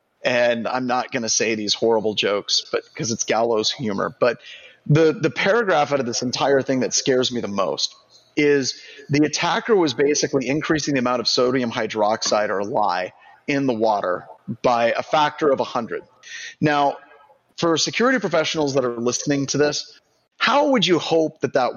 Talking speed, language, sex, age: 175 wpm, English, male, 30-49